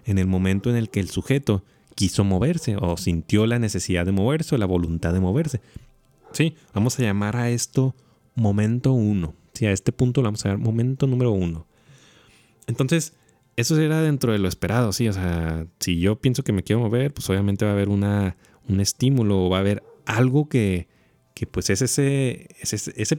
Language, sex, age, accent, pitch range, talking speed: Spanish, male, 30-49, Mexican, 100-130 Hz, 200 wpm